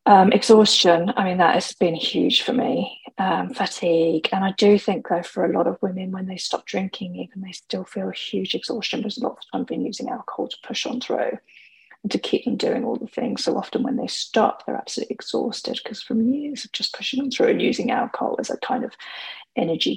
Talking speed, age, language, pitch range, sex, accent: 230 wpm, 20-39, English, 195-235 Hz, female, British